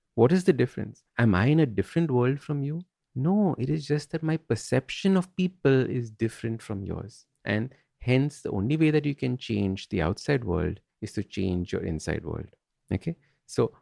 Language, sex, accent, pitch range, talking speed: English, male, Indian, 110-150 Hz, 195 wpm